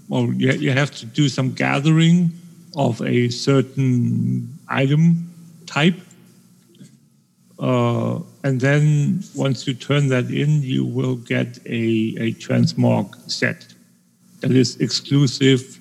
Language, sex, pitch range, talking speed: English, male, 110-145 Hz, 115 wpm